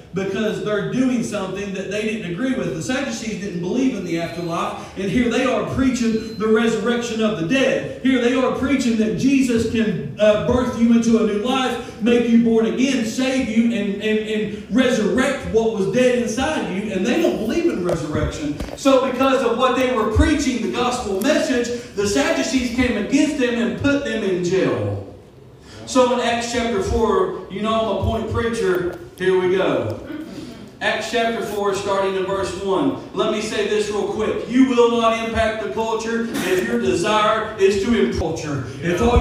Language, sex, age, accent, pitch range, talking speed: English, male, 40-59, American, 210-250 Hz, 185 wpm